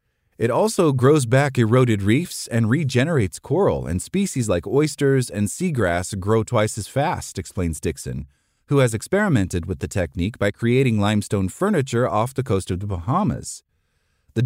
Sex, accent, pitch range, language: male, American, 100-140 Hz, English